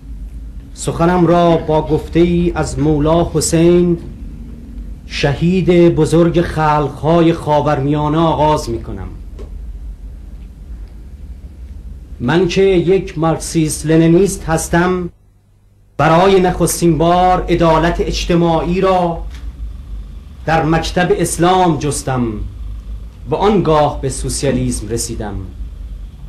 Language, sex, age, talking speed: Persian, male, 40-59, 80 wpm